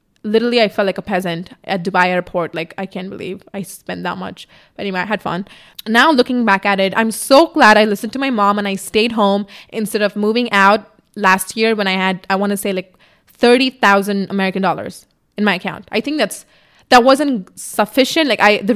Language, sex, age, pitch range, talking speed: English, female, 20-39, 195-235 Hz, 220 wpm